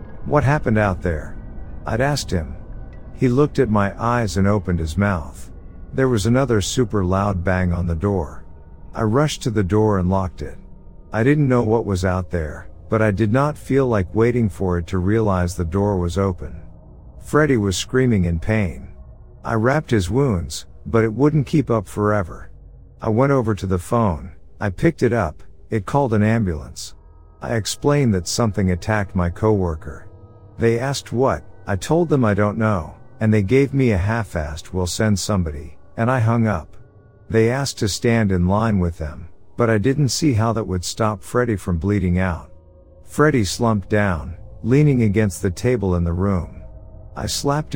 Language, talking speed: English, 185 wpm